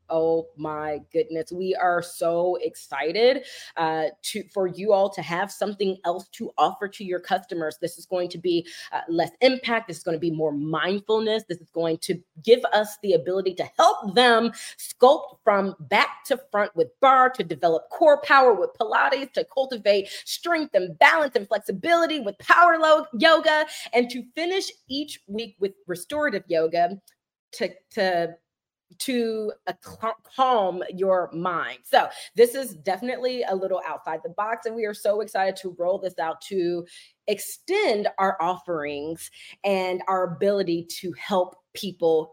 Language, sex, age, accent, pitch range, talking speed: English, female, 30-49, American, 175-260 Hz, 160 wpm